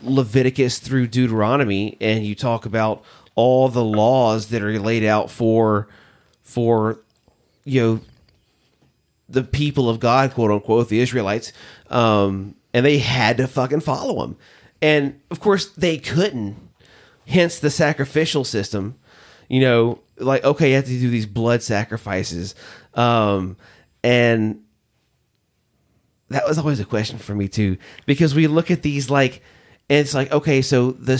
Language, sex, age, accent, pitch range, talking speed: English, male, 30-49, American, 110-140 Hz, 145 wpm